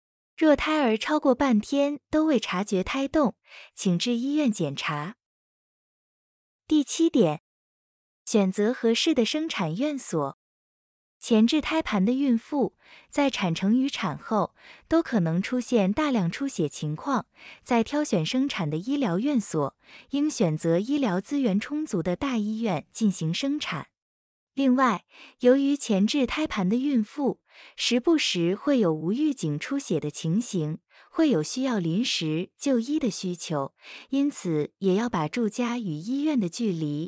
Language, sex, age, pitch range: Chinese, female, 20-39, 180-280 Hz